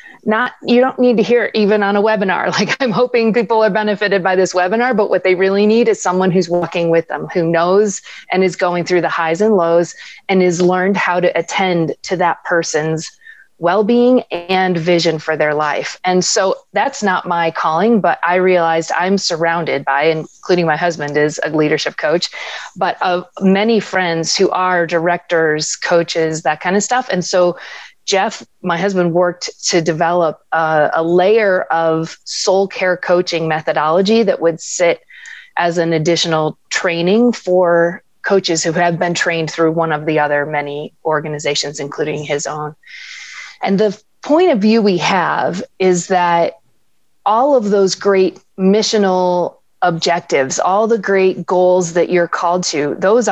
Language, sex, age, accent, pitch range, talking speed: English, female, 30-49, American, 165-205 Hz, 170 wpm